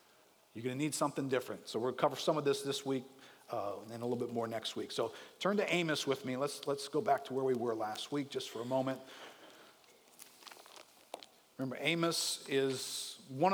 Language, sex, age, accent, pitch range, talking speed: English, male, 50-69, American, 130-175 Hz, 220 wpm